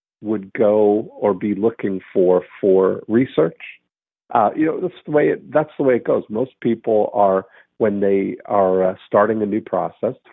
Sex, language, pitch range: male, English, 95-115 Hz